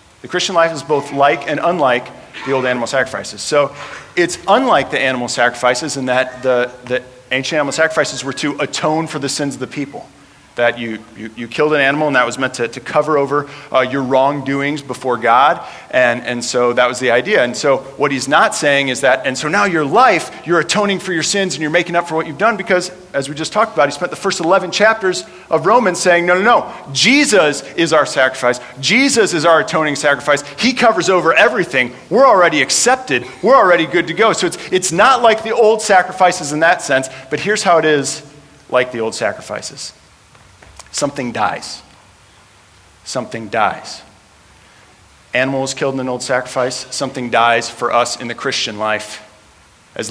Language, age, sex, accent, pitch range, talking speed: English, 40-59, male, American, 125-165 Hz, 200 wpm